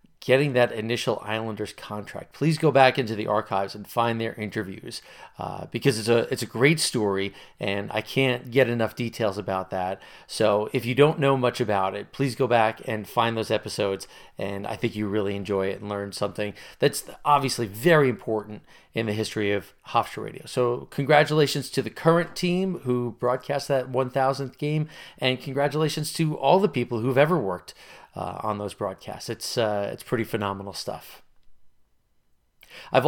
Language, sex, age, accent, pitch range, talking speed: English, male, 40-59, American, 110-140 Hz, 175 wpm